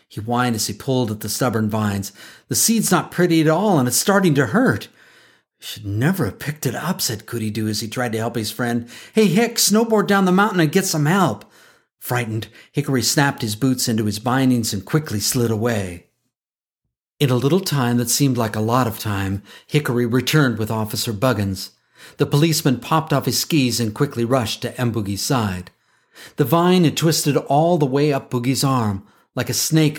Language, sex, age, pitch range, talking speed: English, male, 50-69, 110-140 Hz, 200 wpm